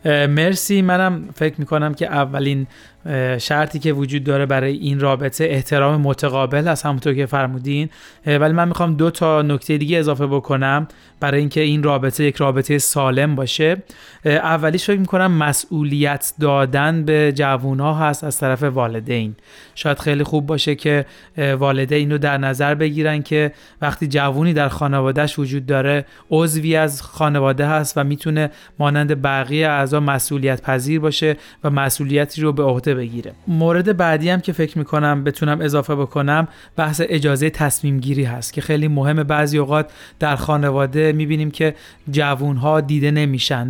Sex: male